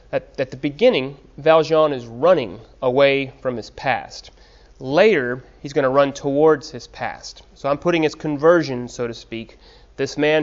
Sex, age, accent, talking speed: male, 30-49, American, 160 wpm